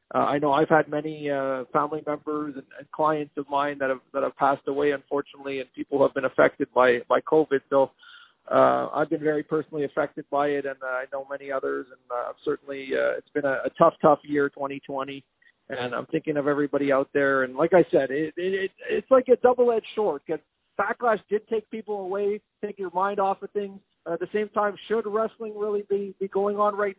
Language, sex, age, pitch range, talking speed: English, male, 40-59, 145-185 Hz, 220 wpm